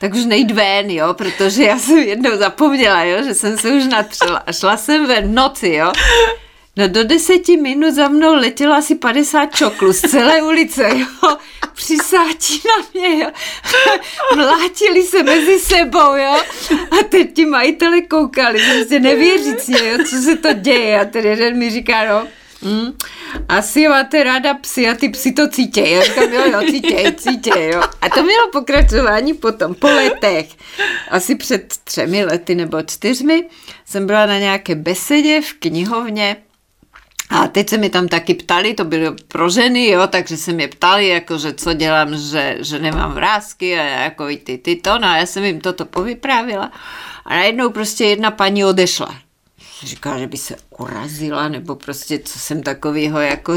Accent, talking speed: native, 165 wpm